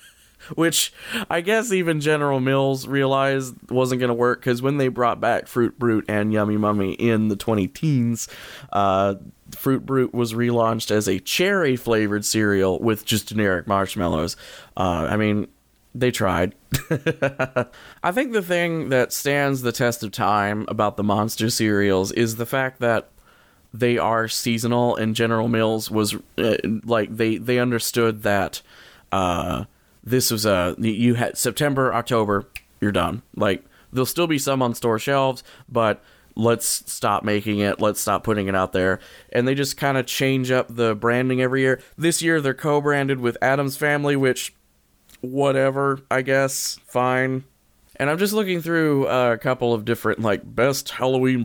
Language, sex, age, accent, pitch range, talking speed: English, male, 20-39, American, 110-135 Hz, 160 wpm